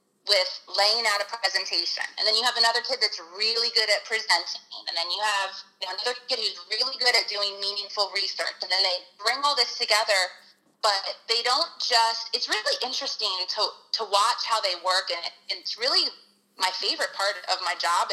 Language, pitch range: English, 190-245 Hz